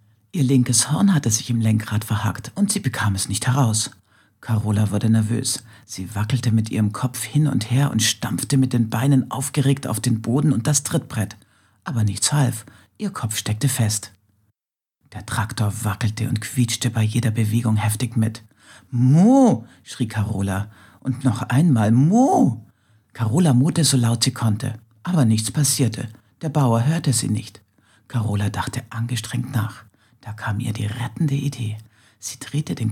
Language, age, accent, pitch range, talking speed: German, 50-69, German, 110-130 Hz, 160 wpm